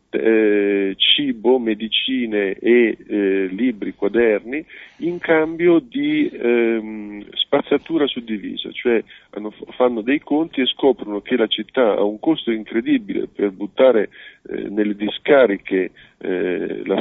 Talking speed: 115 wpm